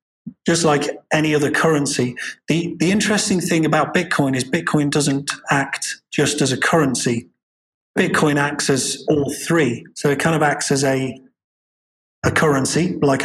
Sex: male